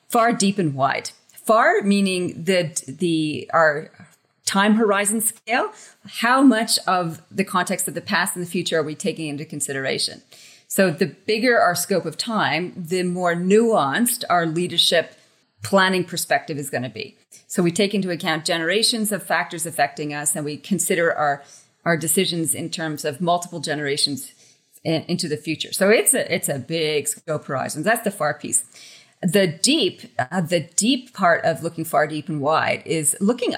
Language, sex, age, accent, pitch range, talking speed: English, female, 30-49, American, 155-210 Hz, 170 wpm